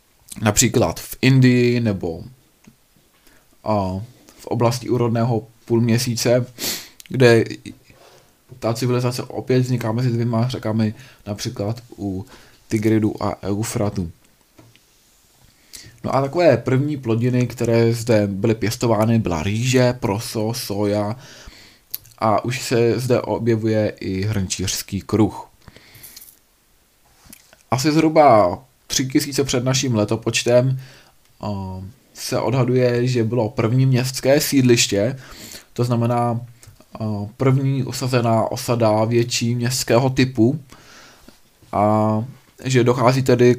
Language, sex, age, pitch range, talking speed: Czech, male, 20-39, 110-125 Hz, 95 wpm